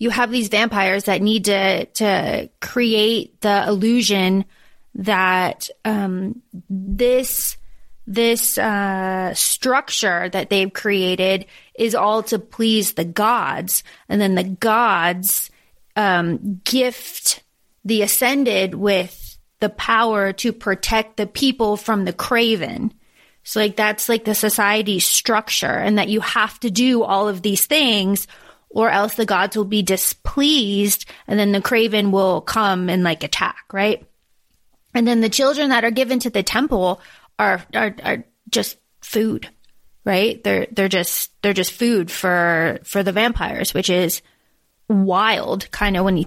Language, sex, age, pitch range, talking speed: English, female, 30-49, 195-230 Hz, 145 wpm